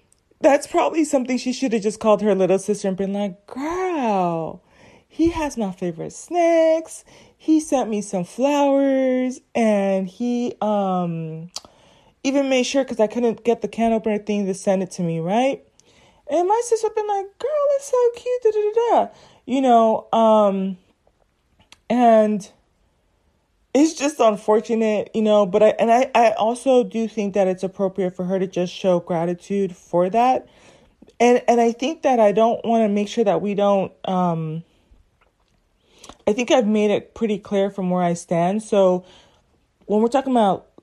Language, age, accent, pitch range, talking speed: English, 20-39, American, 190-255 Hz, 170 wpm